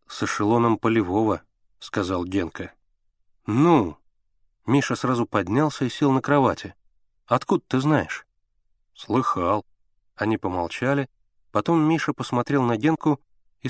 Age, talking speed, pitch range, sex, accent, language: 30-49, 110 wpm, 100-145 Hz, male, native, Russian